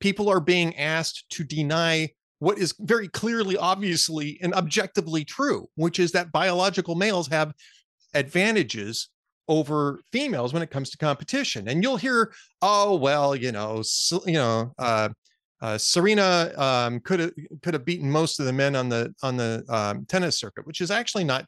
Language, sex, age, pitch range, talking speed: English, male, 30-49, 135-190 Hz, 170 wpm